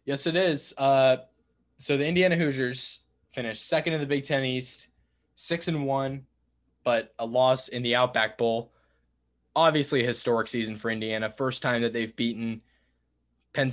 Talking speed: 155 wpm